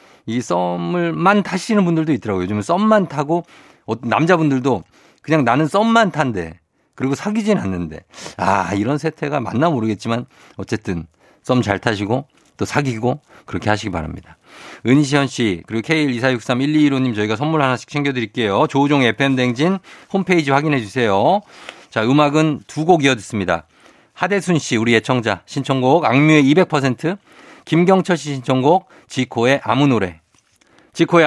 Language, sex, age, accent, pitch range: Korean, male, 50-69, native, 115-160 Hz